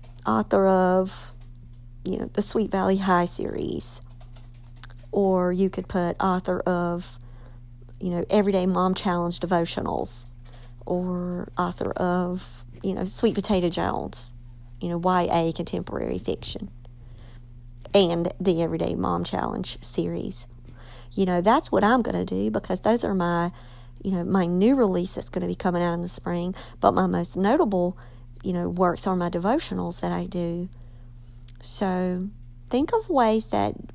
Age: 50-69